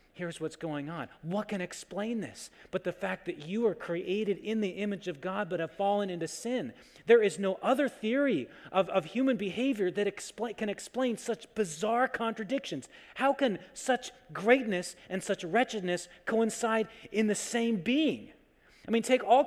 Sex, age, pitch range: male, 30-49, 160-220 Hz